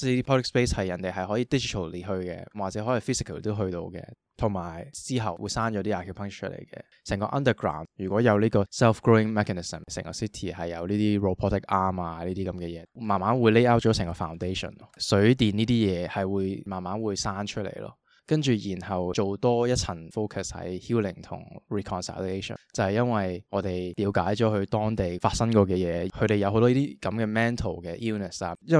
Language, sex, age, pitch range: Chinese, male, 20-39, 95-110 Hz